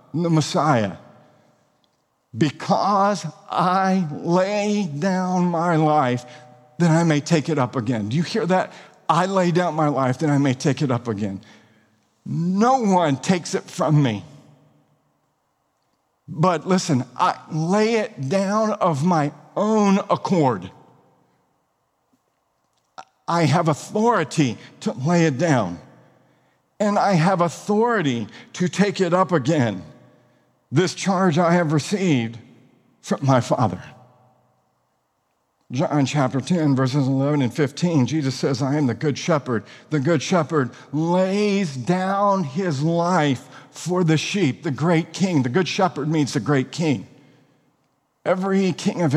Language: English